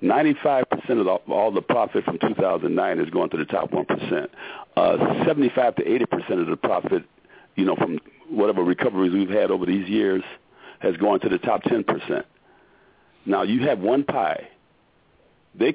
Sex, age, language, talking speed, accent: male, 50-69, English, 165 wpm, American